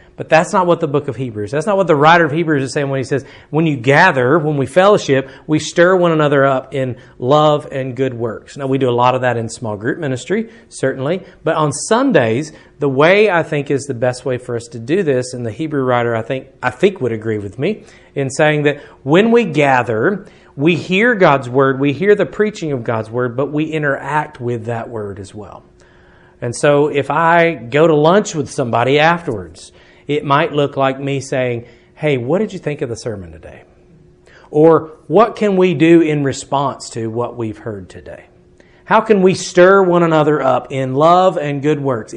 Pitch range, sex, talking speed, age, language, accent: 125-165 Hz, male, 215 wpm, 40-59, English, American